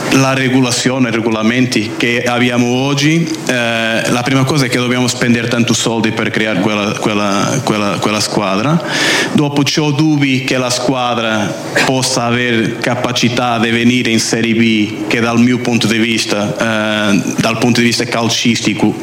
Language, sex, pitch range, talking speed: Italian, male, 115-145 Hz, 150 wpm